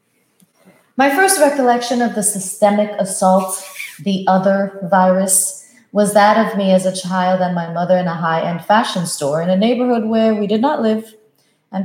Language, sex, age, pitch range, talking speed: English, female, 30-49, 185-225 Hz, 170 wpm